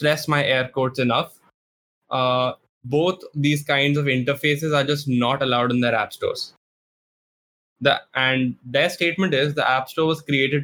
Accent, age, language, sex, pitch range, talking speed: Indian, 10-29, English, male, 130-150 Hz, 165 wpm